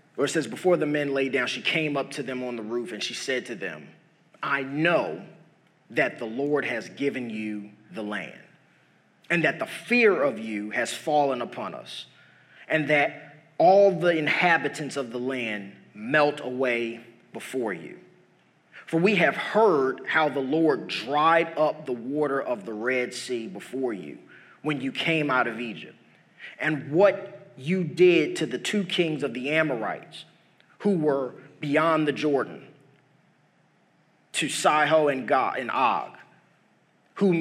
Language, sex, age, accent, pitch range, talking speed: English, male, 30-49, American, 135-175 Hz, 155 wpm